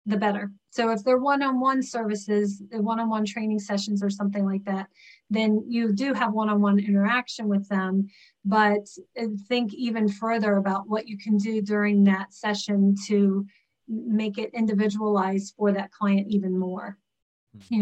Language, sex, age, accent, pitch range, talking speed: English, female, 30-49, American, 200-215 Hz, 150 wpm